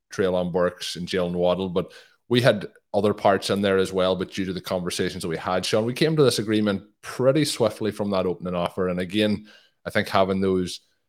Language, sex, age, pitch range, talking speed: English, male, 20-39, 90-105 Hz, 215 wpm